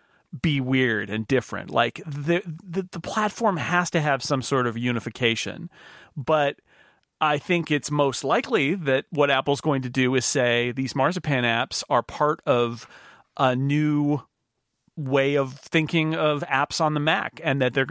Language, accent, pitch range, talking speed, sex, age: English, American, 125-160 Hz, 165 wpm, male, 40-59